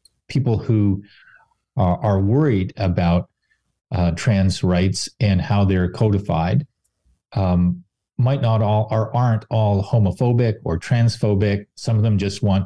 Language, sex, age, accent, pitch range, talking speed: English, male, 40-59, American, 90-115 Hz, 135 wpm